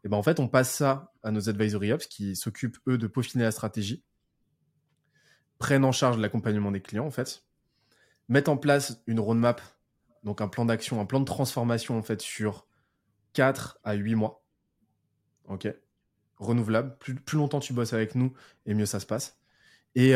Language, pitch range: French, 105-130 Hz